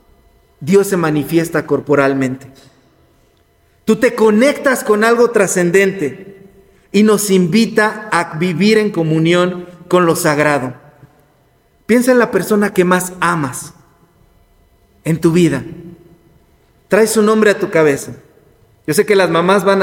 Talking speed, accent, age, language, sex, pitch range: 125 wpm, Mexican, 40-59, Spanish, male, 165-225 Hz